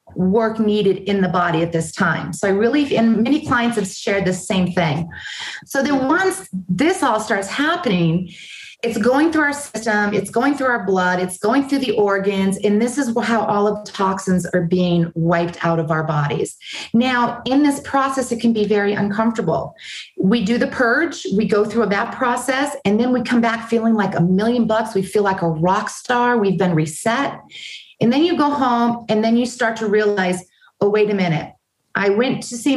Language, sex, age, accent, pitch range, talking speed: English, female, 40-59, American, 185-240 Hz, 205 wpm